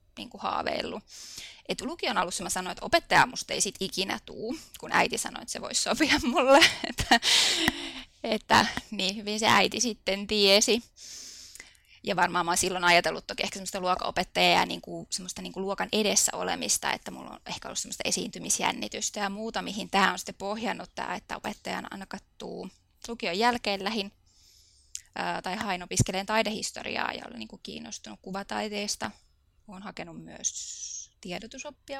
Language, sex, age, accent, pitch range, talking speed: Finnish, female, 20-39, native, 185-230 Hz, 155 wpm